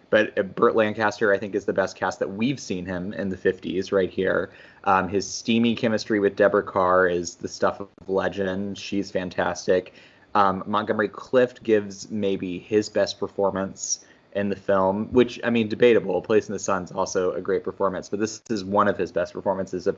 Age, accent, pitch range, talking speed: 20-39, American, 95-115 Hz, 190 wpm